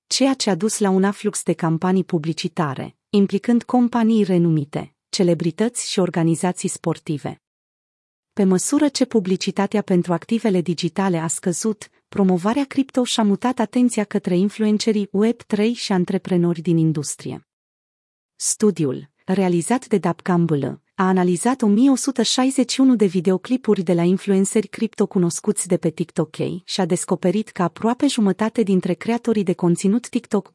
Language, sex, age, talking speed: Romanian, female, 30-49, 135 wpm